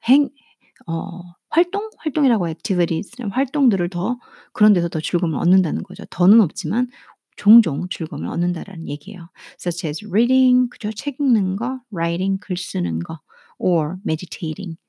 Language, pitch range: Korean, 175-235 Hz